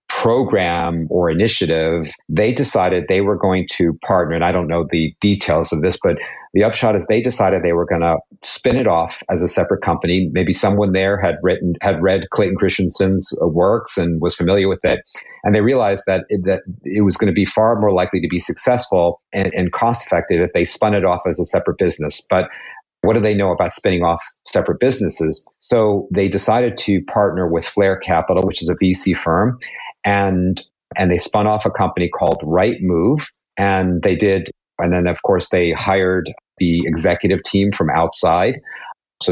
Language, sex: English, male